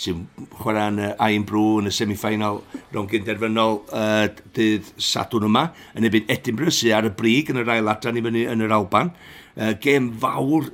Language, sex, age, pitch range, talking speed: English, male, 60-79, 105-120 Hz, 190 wpm